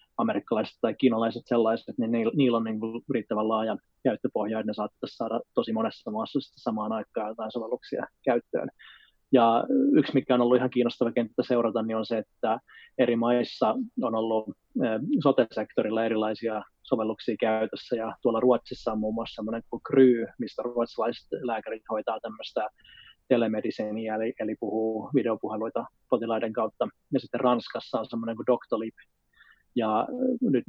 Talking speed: 145 wpm